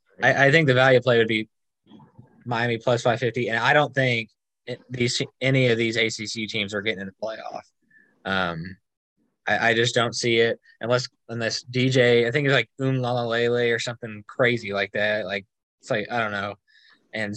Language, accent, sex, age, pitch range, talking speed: English, American, male, 20-39, 110-130 Hz, 195 wpm